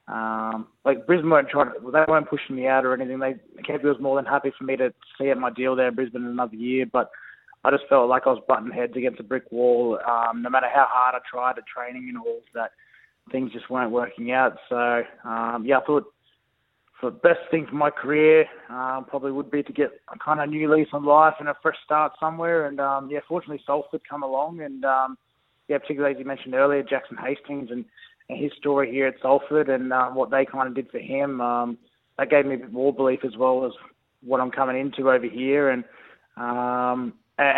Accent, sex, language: Australian, male, English